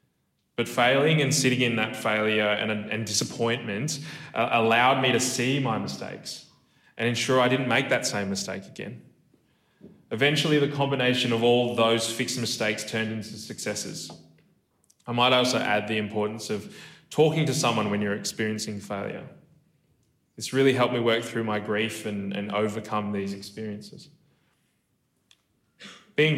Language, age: English, 20-39